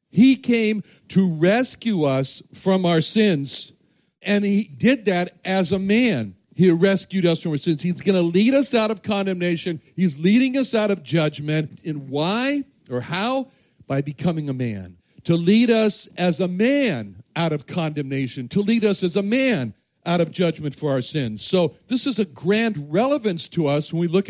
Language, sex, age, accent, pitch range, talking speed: English, male, 60-79, American, 160-215 Hz, 185 wpm